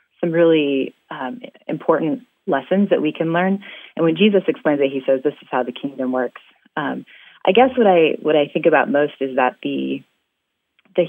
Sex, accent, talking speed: female, American, 195 wpm